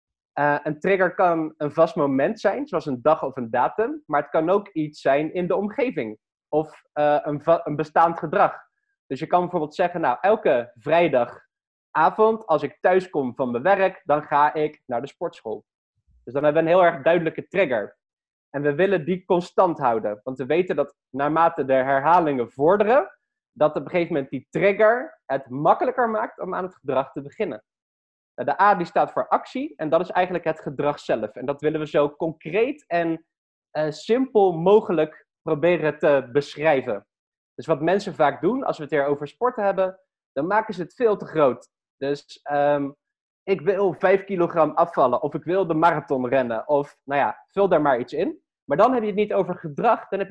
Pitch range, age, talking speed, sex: 145-190 Hz, 20-39, 195 wpm, male